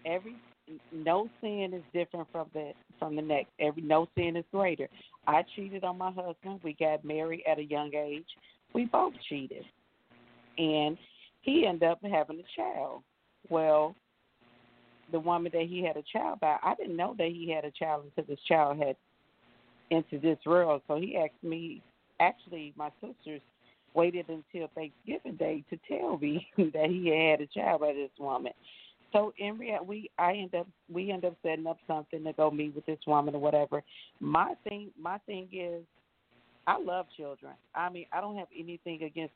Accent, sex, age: American, female, 40-59